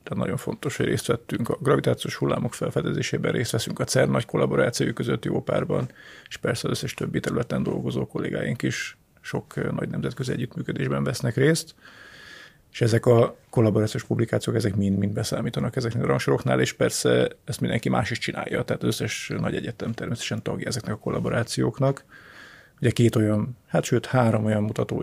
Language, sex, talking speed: Hungarian, male, 170 wpm